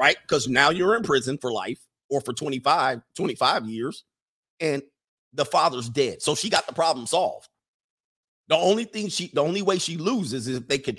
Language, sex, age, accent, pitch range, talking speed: English, male, 50-69, American, 110-150 Hz, 195 wpm